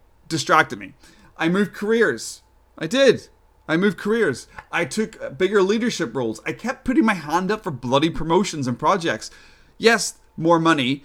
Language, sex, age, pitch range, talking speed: English, male, 30-49, 130-185 Hz, 160 wpm